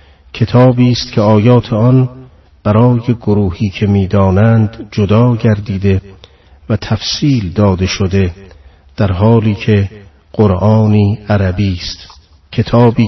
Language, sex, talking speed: Persian, male, 100 wpm